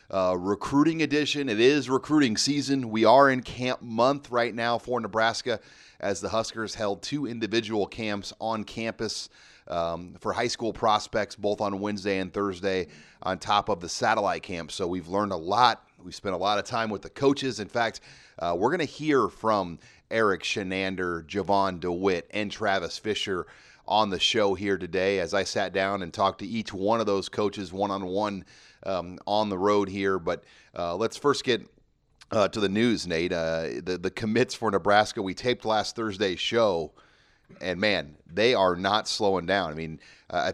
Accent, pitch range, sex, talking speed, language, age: American, 95-115 Hz, male, 185 wpm, English, 30-49